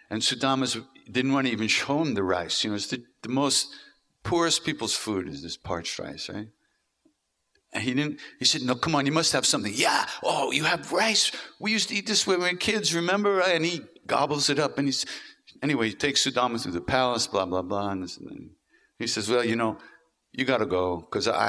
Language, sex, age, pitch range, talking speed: English, male, 60-79, 110-155 Hz, 225 wpm